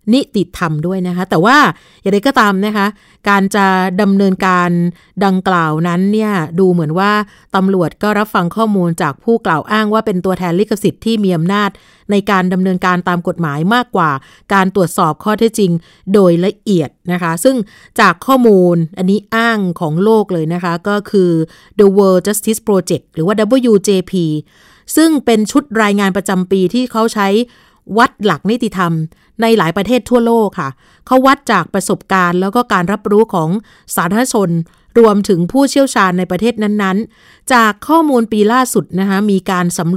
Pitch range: 180-220 Hz